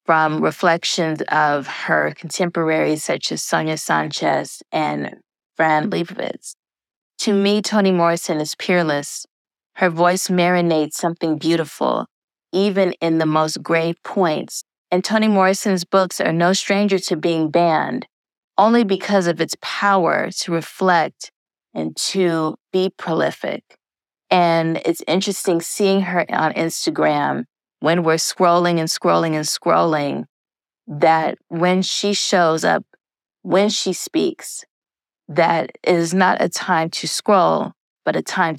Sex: female